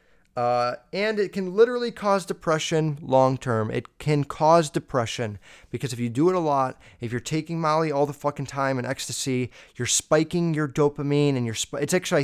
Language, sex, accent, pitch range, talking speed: English, male, American, 120-155 Hz, 185 wpm